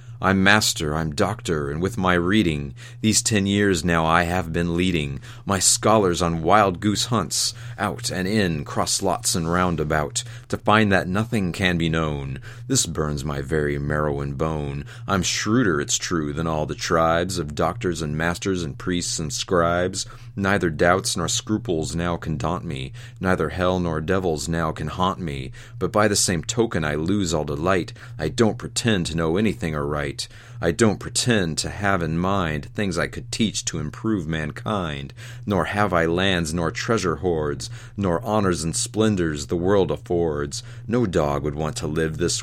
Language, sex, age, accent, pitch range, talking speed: English, male, 30-49, American, 85-110 Hz, 180 wpm